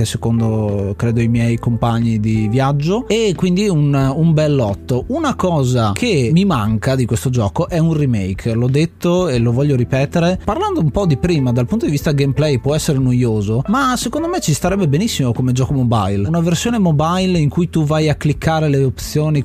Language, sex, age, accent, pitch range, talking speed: Italian, male, 30-49, native, 125-160 Hz, 195 wpm